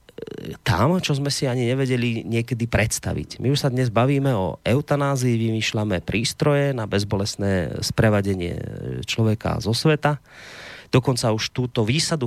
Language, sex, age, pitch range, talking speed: Slovak, male, 30-49, 105-130 Hz, 130 wpm